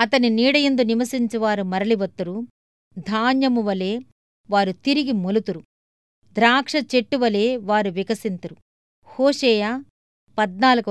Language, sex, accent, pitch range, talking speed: Telugu, female, native, 190-245 Hz, 85 wpm